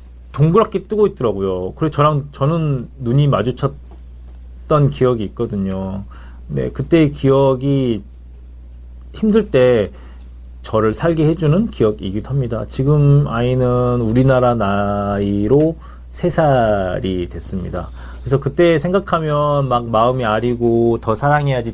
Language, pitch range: Korean, 95-145 Hz